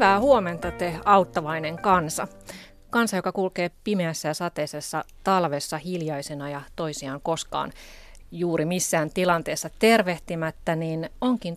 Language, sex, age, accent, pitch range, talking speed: Finnish, female, 30-49, native, 150-185 Hz, 115 wpm